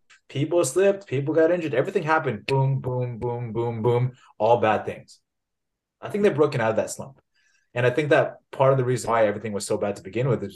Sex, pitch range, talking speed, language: male, 110-140 Hz, 225 wpm, English